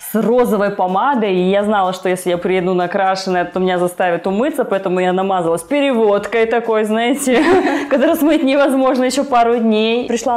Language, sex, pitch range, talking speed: Russian, female, 195-245 Hz, 155 wpm